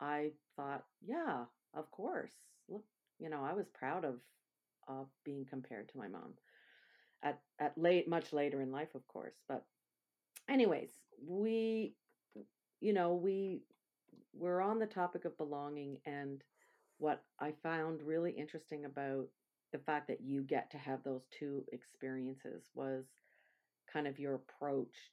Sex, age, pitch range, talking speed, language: female, 40-59, 130-150 Hz, 145 wpm, English